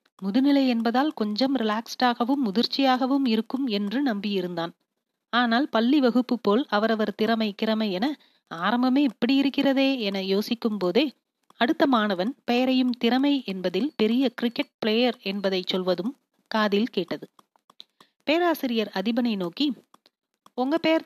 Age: 30-49